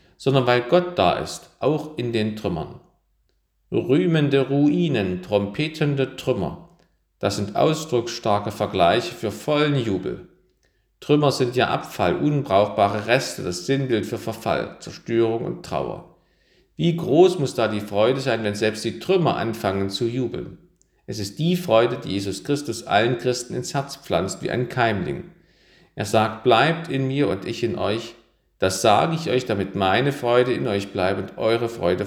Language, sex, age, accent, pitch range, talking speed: German, male, 50-69, German, 105-140 Hz, 155 wpm